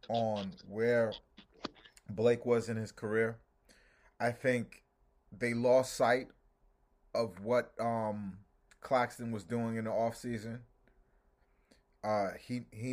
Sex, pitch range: male, 105-130 Hz